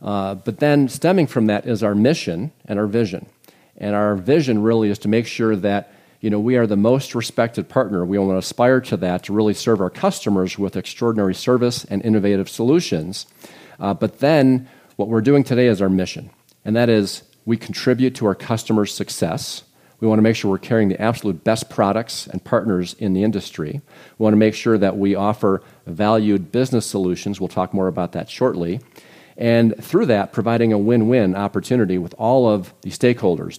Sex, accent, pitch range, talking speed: male, American, 100-120 Hz, 195 wpm